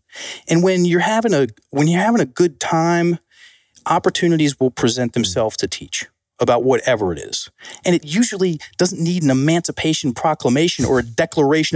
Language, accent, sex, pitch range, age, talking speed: English, American, male, 130-175 Hz, 30-49, 165 wpm